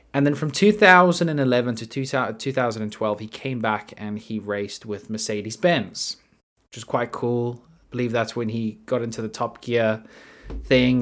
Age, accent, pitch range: 20-39, Australian, 110-150 Hz